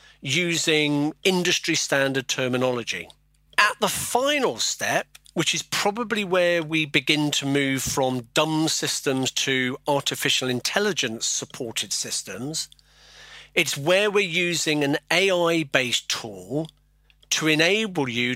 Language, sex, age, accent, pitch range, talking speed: English, male, 40-59, British, 130-165 Hz, 110 wpm